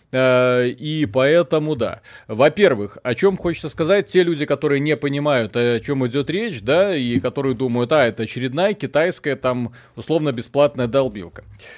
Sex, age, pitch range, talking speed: male, 30-49, 125-165 Hz, 145 wpm